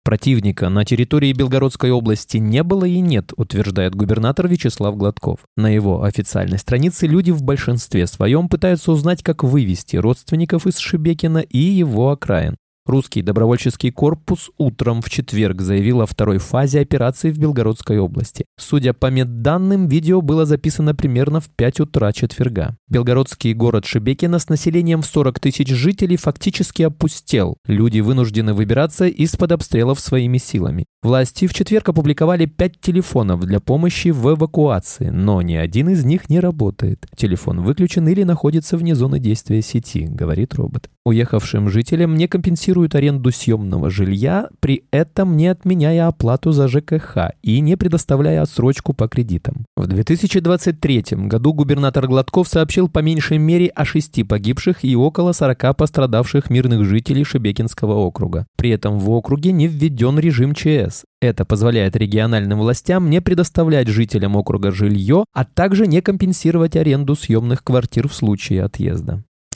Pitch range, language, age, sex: 115-165 Hz, Russian, 20-39, male